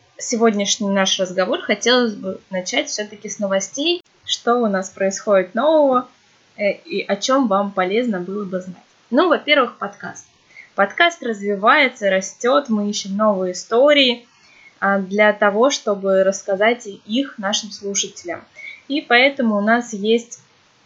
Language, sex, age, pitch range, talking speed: Russian, female, 20-39, 200-255 Hz, 125 wpm